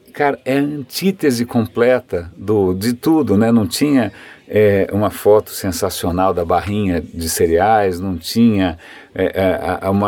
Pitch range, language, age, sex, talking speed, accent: 100-125 Hz, Portuguese, 50-69, male, 145 wpm, Brazilian